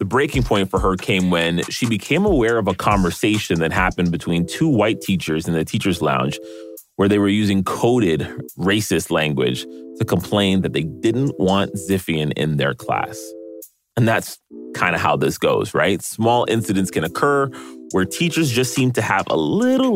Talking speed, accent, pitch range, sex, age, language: 180 wpm, American, 85-125 Hz, male, 30-49, English